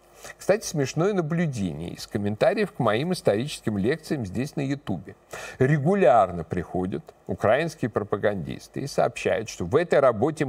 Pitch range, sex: 115-165 Hz, male